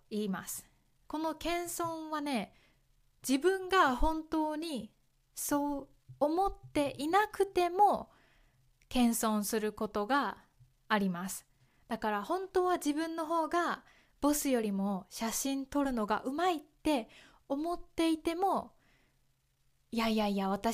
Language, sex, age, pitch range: Japanese, female, 20-39, 210-305 Hz